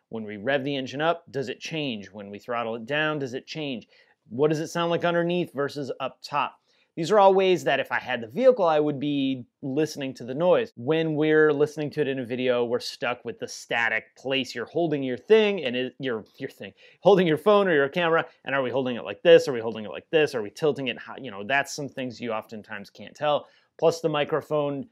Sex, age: male, 30-49